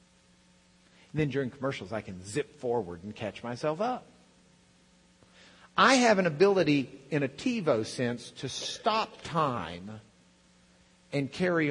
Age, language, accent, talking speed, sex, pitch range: 50-69, English, American, 125 wpm, male, 105-150 Hz